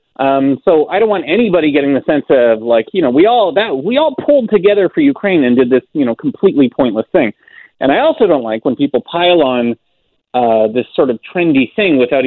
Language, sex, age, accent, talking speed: English, male, 30-49, American, 225 wpm